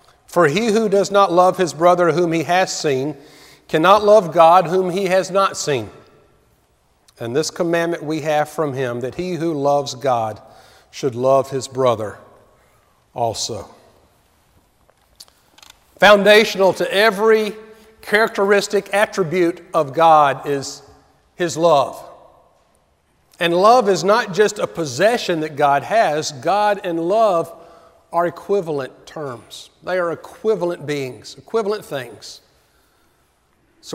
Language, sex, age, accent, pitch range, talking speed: English, male, 50-69, American, 135-185 Hz, 125 wpm